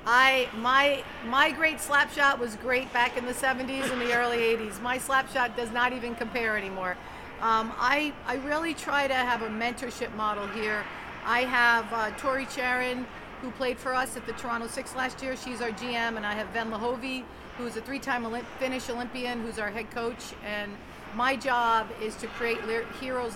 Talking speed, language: 200 wpm, English